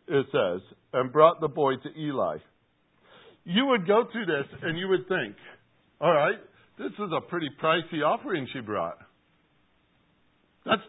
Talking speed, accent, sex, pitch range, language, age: 150 wpm, American, male, 150-195 Hz, English, 60-79